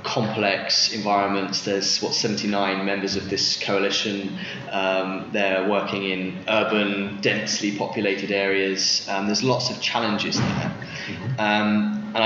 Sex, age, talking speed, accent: male, 20-39, 120 wpm, British